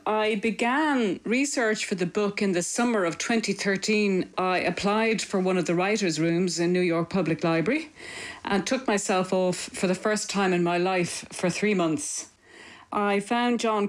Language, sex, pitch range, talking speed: English, female, 165-205 Hz, 175 wpm